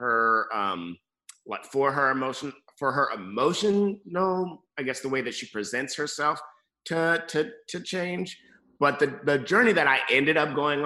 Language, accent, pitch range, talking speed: English, American, 110-145 Hz, 165 wpm